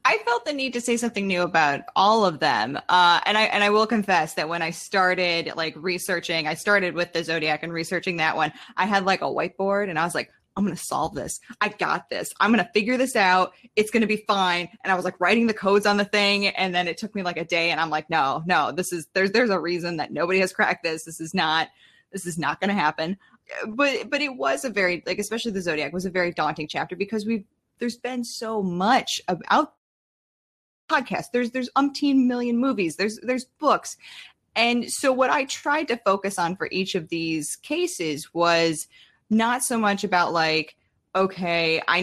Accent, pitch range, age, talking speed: American, 165-215 Hz, 20-39, 225 wpm